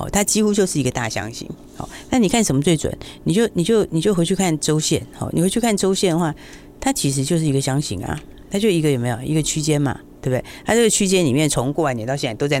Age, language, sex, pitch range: 40-59, Chinese, female, 125-185 Hz